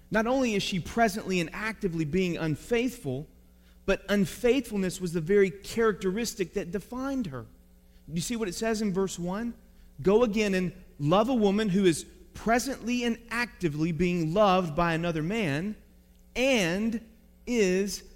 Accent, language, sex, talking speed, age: American, English, male, 150 wpm, 30-49